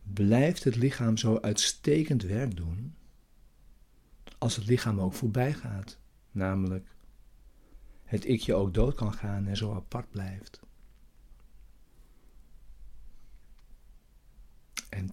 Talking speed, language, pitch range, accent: 105 wpm, Dutch, 95-120 Hz, Dutch